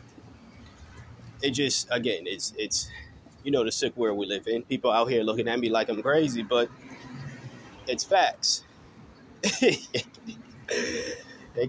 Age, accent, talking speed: 20-39, American, 135 wpm